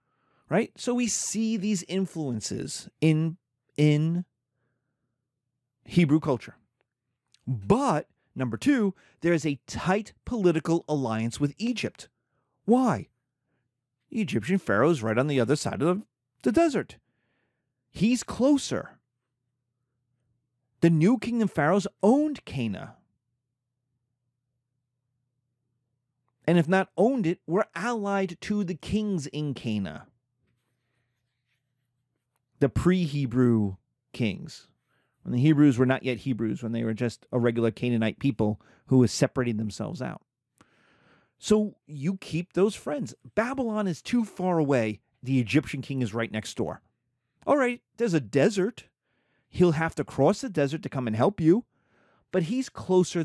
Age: 30-49